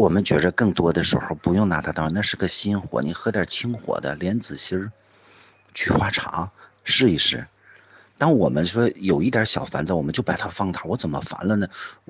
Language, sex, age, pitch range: Chinese, male, 50-69, 85-110 Hz